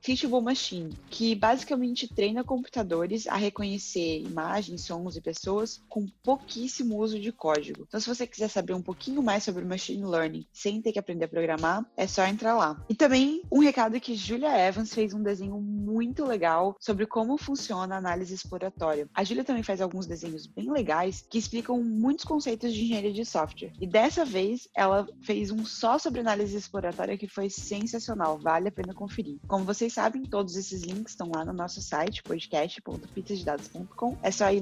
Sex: female